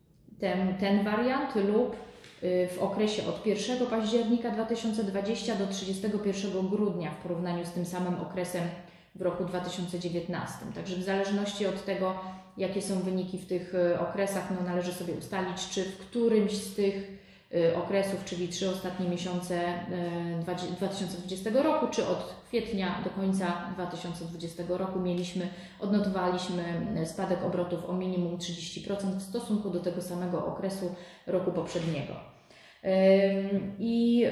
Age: 30-49